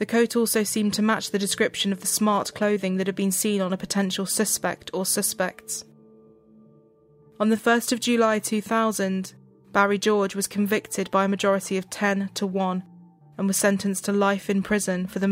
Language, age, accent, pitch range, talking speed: English, 20-39, British, 185-205 Hz, 190 wpm